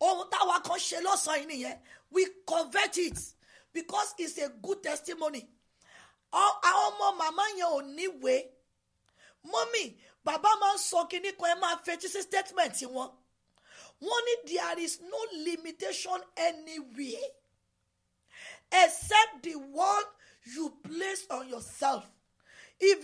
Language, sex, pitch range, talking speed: English, female, 270-365 Hz, 120 wpm